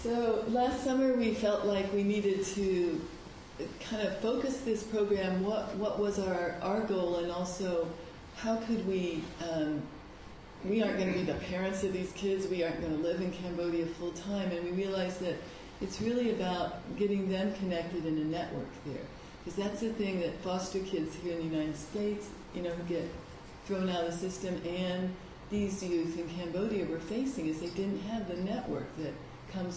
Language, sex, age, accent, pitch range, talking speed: English, female, 40-59, American, 170-200 Hz, 190 wpm